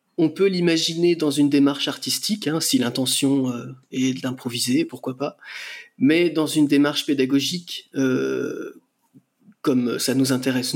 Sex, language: male, French